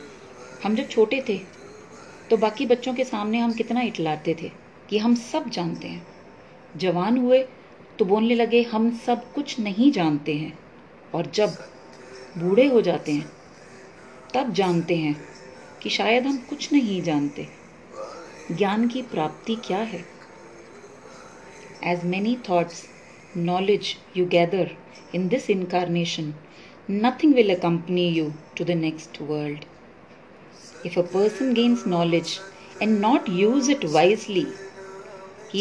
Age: 30-49